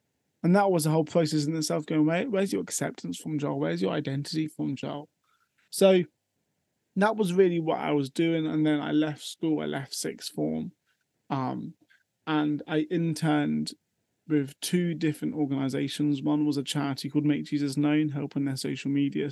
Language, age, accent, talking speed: English, 20-39, British, 175 wpm